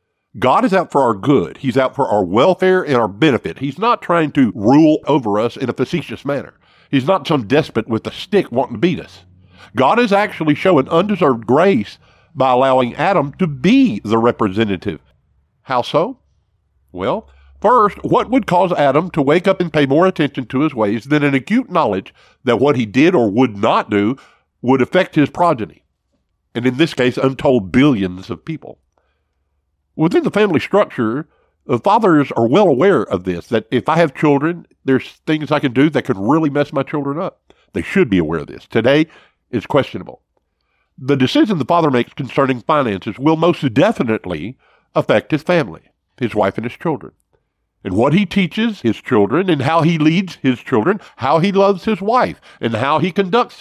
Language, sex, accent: English, male, American